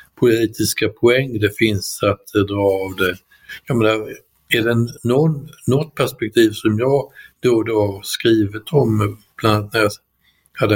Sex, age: male, 50-69